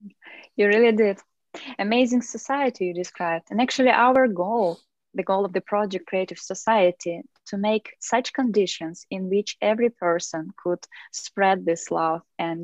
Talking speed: 145 wpm